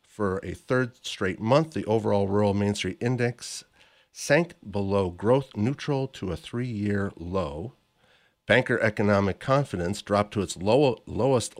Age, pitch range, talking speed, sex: 50-69, 100-135 Hz, 135 wpm, male